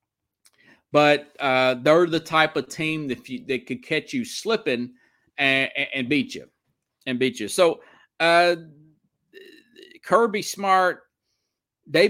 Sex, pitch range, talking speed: male, 125-170 Hz, 135 wpm